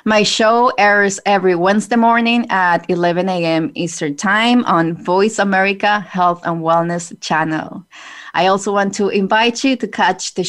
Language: English